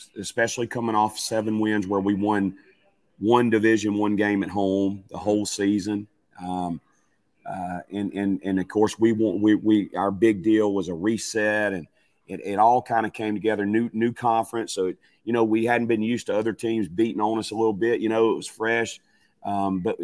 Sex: male